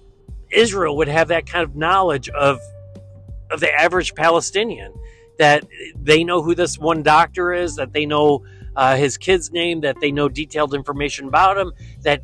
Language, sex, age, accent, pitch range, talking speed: English, male, 40-59, American, 145-190 Hz, 170 wpm